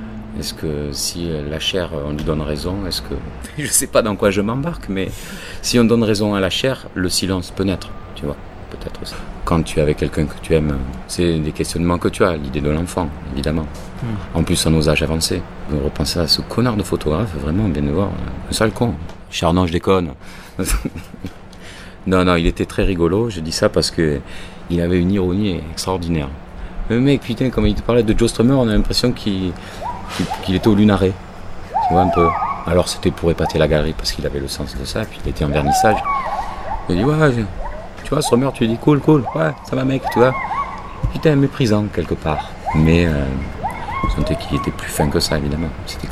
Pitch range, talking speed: 80-105 Hz, 215 wpm